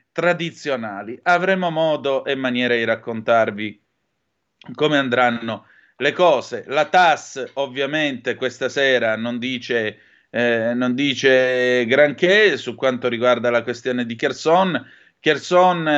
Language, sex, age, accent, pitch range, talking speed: Italian, male, 30-49, native, 125-150 Hz, 115 wpm